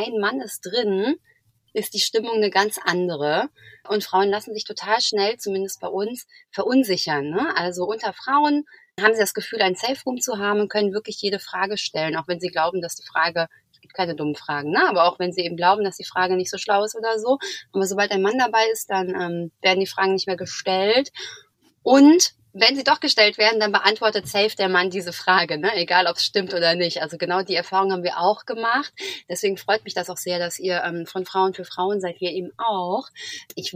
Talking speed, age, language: 220 wpm, 30-49, German